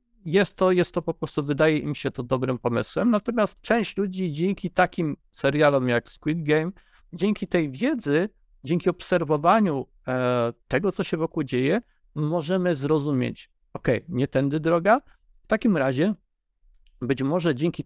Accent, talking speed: native, 140 wpm